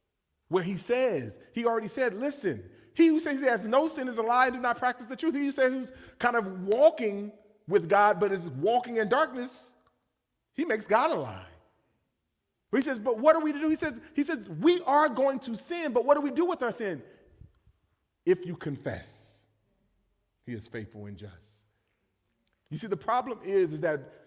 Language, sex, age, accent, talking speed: English, male, 30-49, American, 205 wpm